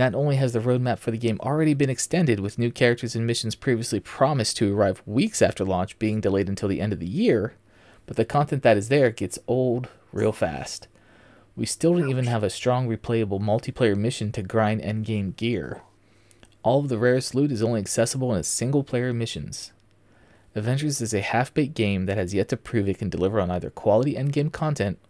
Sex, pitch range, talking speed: male, 105-130 Hz, 205 wpm